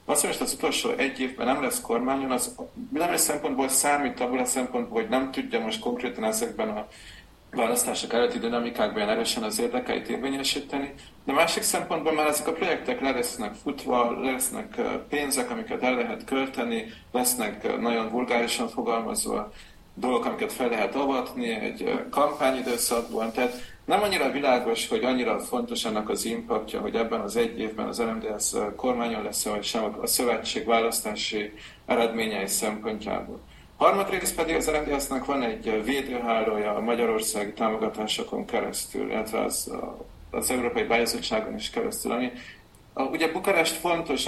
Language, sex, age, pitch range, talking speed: Hungarian, male, 40-59, 115-135 Hz, 145 wpm